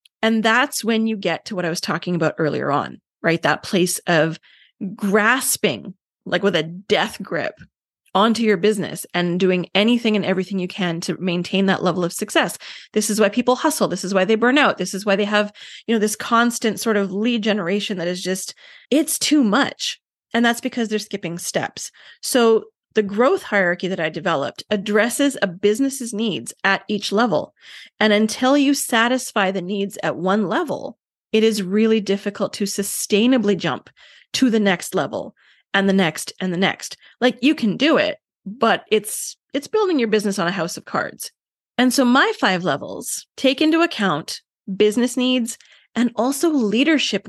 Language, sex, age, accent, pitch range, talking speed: English, female, 30-49, American, 195-240 Hz, 185 wpm